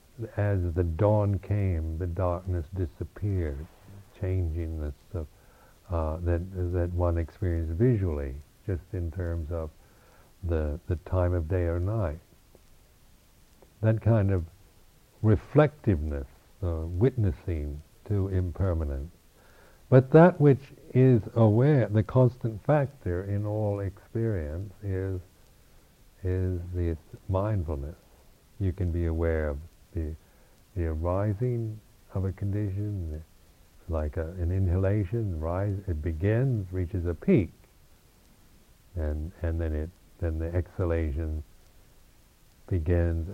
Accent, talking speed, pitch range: American, 110 wpm, 80-100 Hz